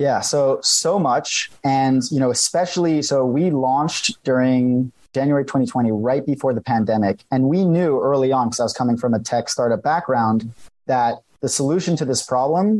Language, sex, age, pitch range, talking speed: English, male, 30-49, 115-140 Hz, 180 wpm